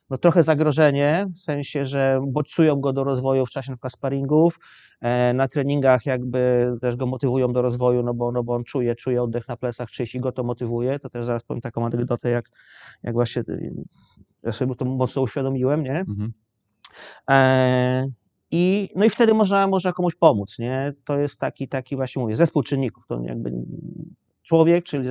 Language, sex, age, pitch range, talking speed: Polish, male, 30-49, 120-145 Hz, 180 wpm